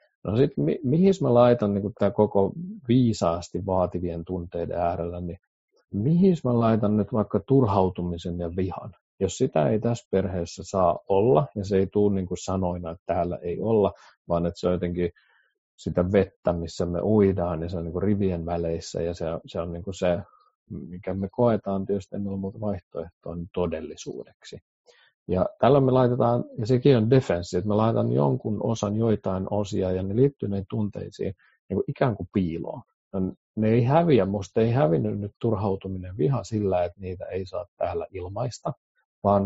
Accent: native